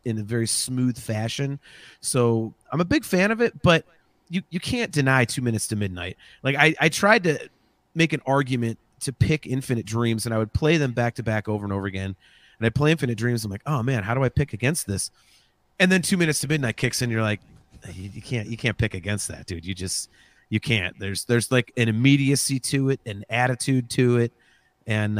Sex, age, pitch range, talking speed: male, 30-49, 110-145 Hz, 230 wpm